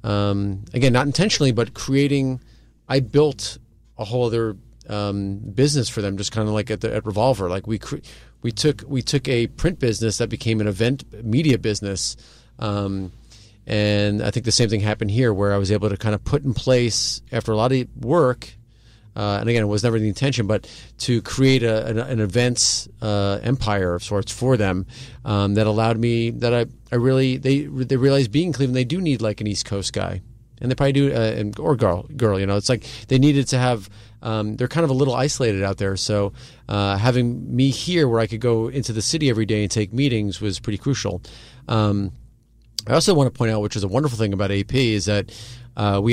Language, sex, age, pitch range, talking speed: English, male, 40-59, 105-125 Hz, 220 wpm